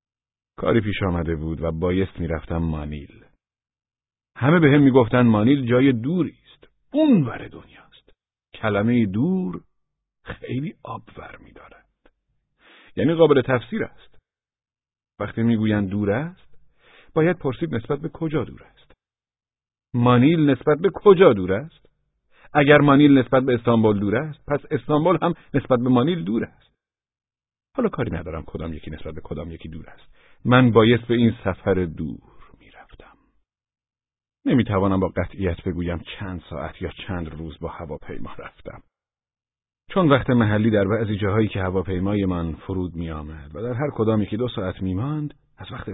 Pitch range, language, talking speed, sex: 95-130 Hz, Persian, 150 wpm, male